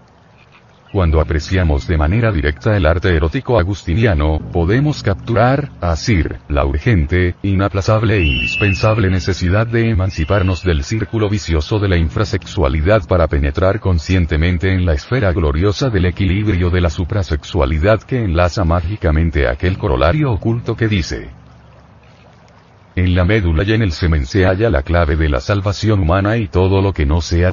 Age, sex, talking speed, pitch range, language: 40-59, male, 145 wpm, 80-105 Hz, Spanish